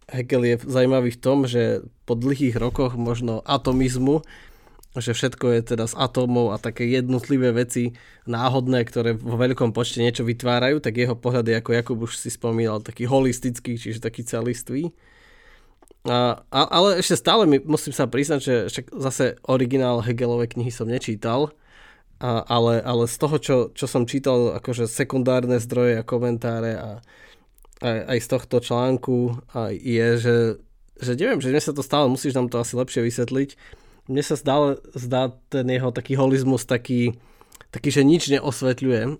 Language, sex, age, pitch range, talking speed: Slovak, male, 20-39, 120-135 Hz, 165 wpm